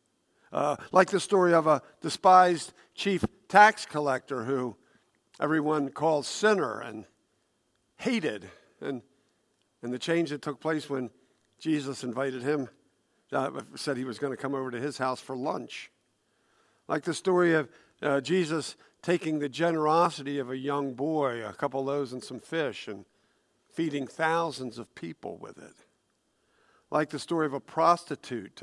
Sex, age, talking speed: male, 50-69, 155 wpm